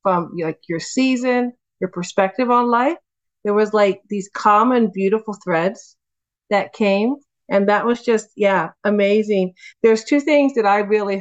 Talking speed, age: 155 wpm, 40-59